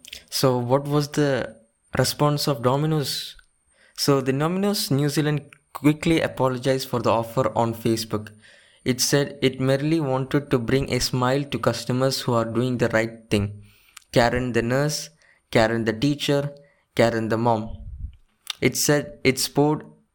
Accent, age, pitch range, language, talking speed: Indian, 20-39, 115-135 Hz, English, 145 wpm